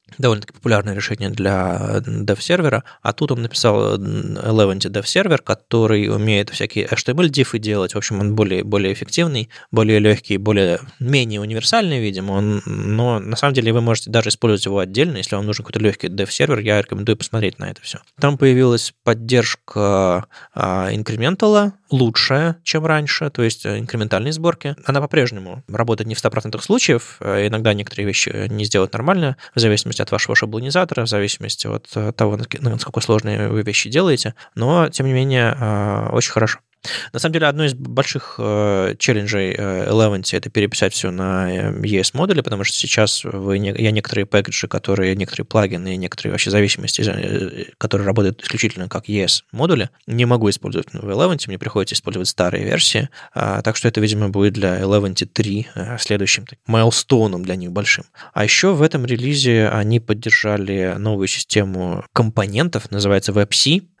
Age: 20-39